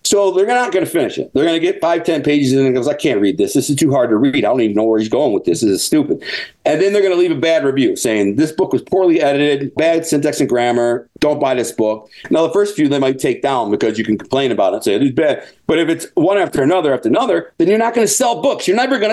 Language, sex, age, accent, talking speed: English, male, 50-69, American, 315 wpm